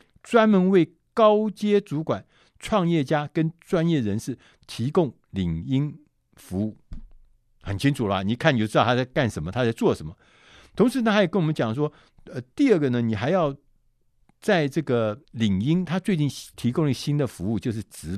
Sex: male